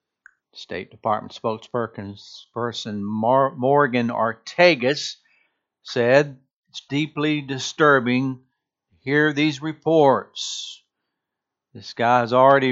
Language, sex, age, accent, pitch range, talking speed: English, male, 60-79, American, 115-150 Hz, 80 wpm